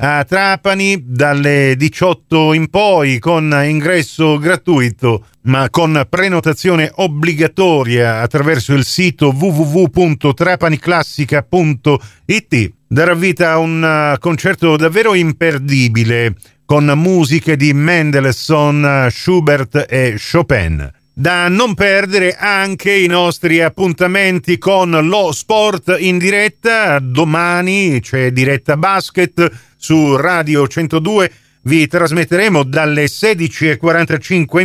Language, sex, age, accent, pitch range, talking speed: Italian, male, 40-59, native, 135-175 Hz, 95 wpm